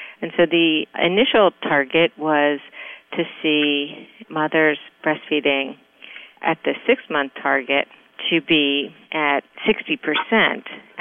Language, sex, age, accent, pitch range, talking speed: English, female, 50-69, American, 140-170 Hz, 100 wpm